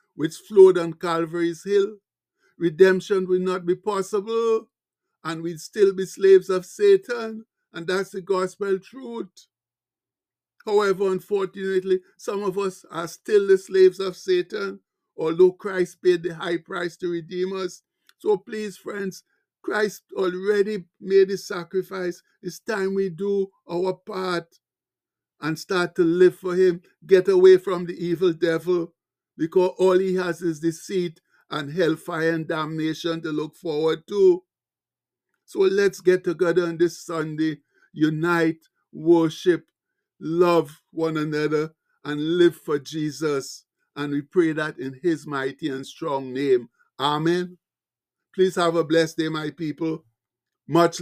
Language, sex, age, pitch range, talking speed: English, male, 60-79, 155-190 Hz, 140 wpm